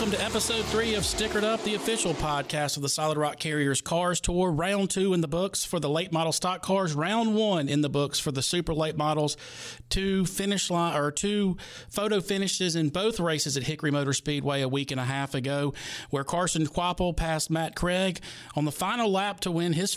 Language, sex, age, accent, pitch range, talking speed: English, male, 40-59, American, 145-175 Hz, 215 wpm